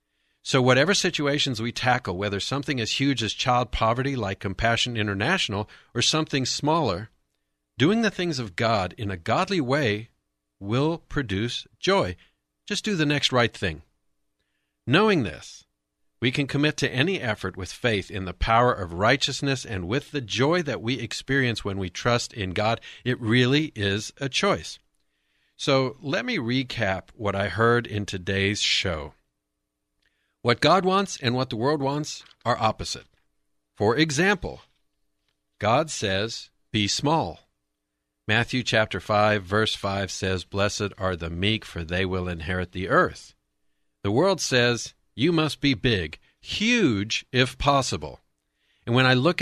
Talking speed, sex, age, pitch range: 150 wpm, male, 50-69, 90-130 Hz